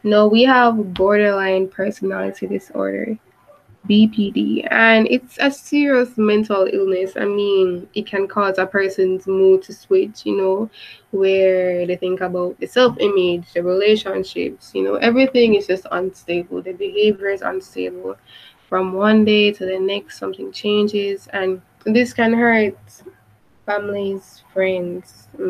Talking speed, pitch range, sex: 135 wpm, 185-210 Hz, female